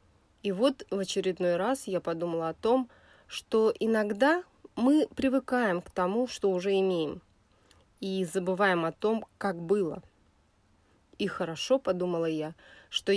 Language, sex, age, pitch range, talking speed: Russian, female, 30-49, 165-210 Hz, 130 wpm